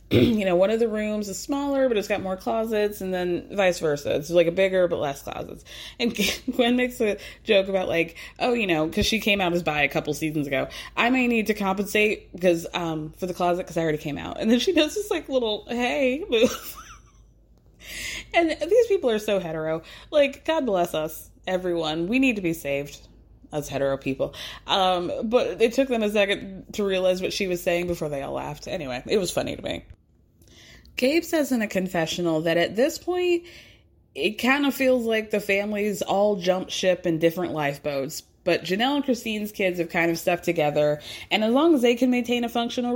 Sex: female